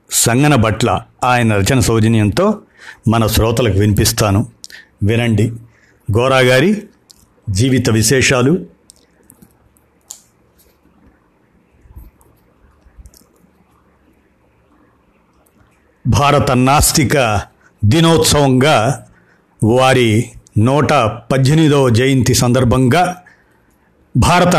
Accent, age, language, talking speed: native, 60-79, Telugu, 55 wpm